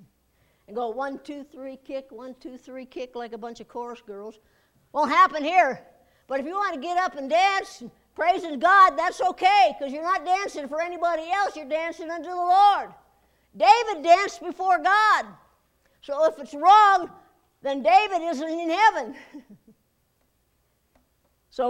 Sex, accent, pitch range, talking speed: female, American, 265-375 Hz, 160 wpm